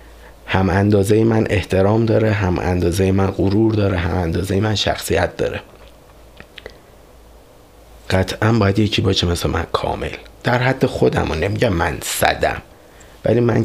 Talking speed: 135 wpm